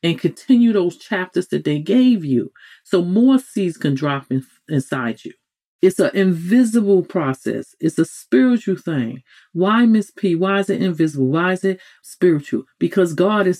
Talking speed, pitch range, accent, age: 165 wpm, 145-195 Hz, American, 40-59